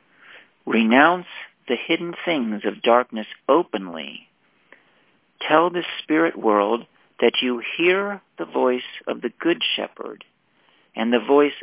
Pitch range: 110-140 Hz